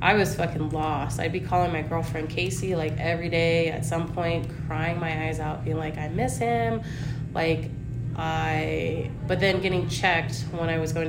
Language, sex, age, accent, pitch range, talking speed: English, female, 20-39, American, 130-165 Hz, 190 wpm